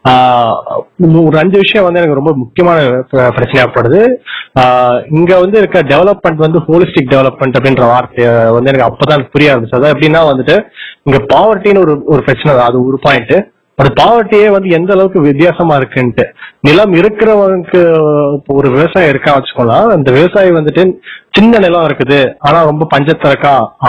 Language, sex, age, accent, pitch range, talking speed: Tamil, male, 30-49, native, 135-175 Hz, 135 wpm